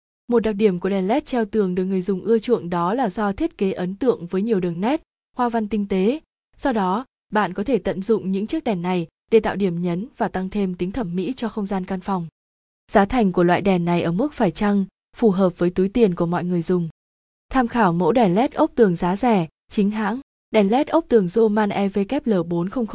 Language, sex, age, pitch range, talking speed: Vietnamese, female, 20-39, 185-235 Hz, 235 wpm